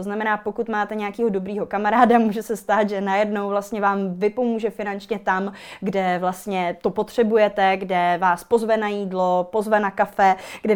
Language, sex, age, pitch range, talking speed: Czech, female, 20-39, 190-215 Hz, 165 wpm